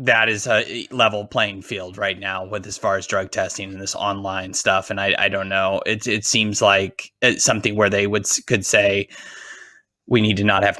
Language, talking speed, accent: English, 215 wpm, American